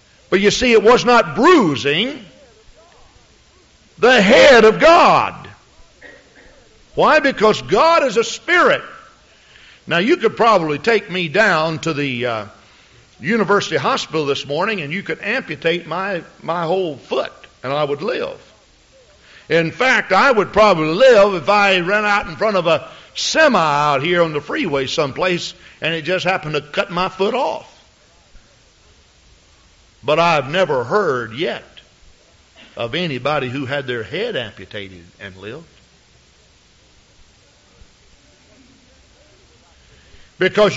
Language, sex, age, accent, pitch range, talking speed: English, male, 50-69, American, 155-230 Hz, 130 wpm